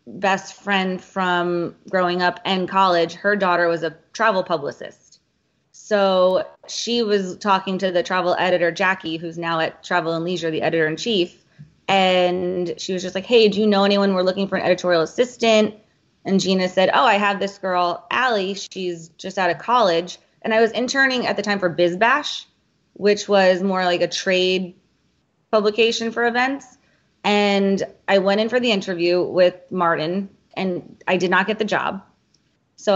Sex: female